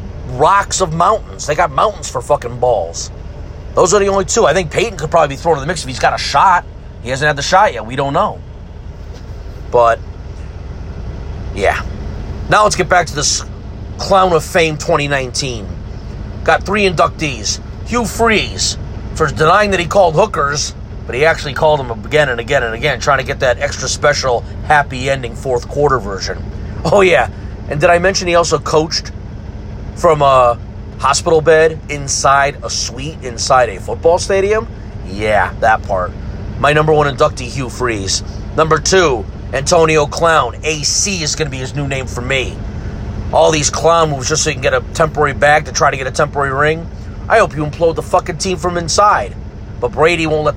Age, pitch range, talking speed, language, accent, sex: 40-59, 100-155 Hz, 185 wpm, English, American, male